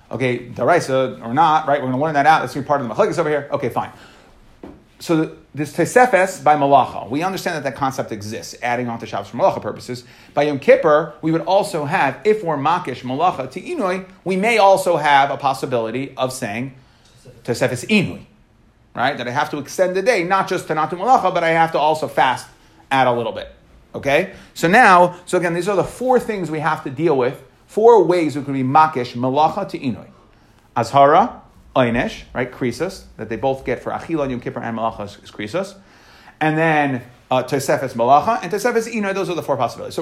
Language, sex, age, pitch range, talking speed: English, male, 30-49, 135-190 Hz, 215 wpm